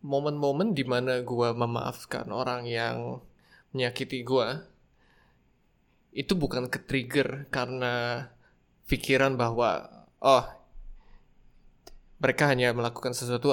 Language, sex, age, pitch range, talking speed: Indonesian, male, 20-39, 120-140 Hz, 95 wpm